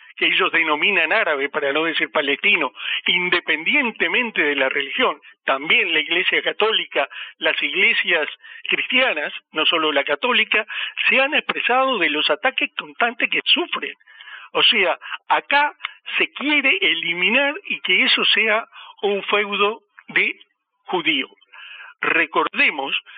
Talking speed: 120 wpm